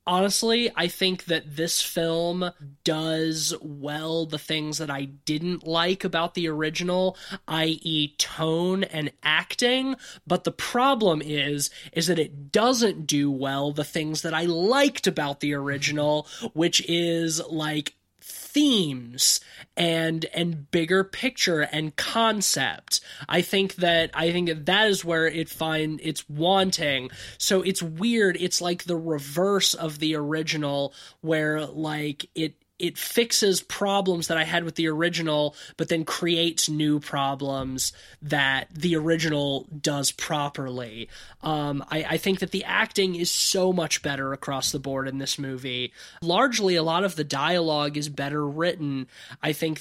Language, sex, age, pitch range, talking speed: English, male, 20-39, 150-170 Hz, 145 wpm